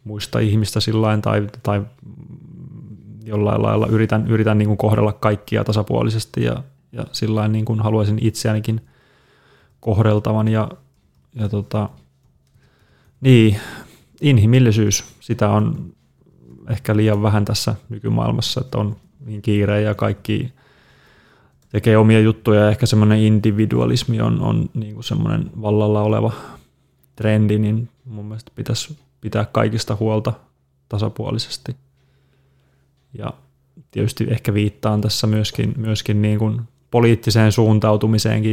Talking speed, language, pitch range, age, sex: 110 wpm, Finnish, 105-120 Hz, 20-39, male